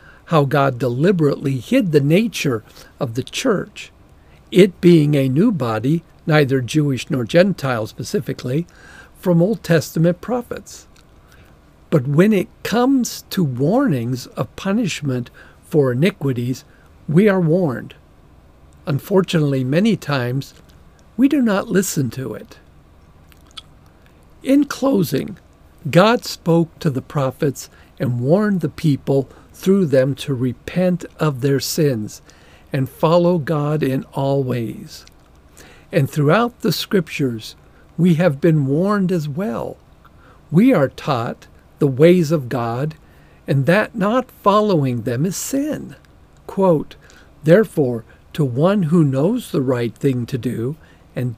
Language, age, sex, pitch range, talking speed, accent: English, 50-69, male, 130-180 Hz, 125 wpm, American